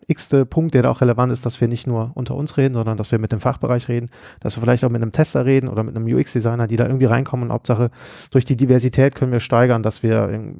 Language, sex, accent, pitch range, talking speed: German, male, German, 115-130 Hz, 265 wpm